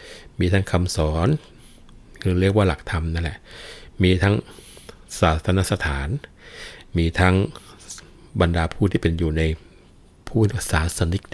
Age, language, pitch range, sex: 60-79, Thai, 80-95 Hz, male